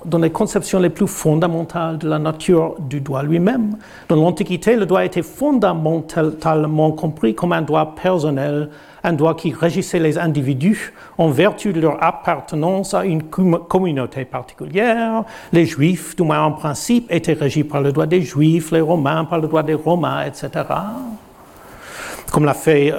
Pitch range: 145-175 Hz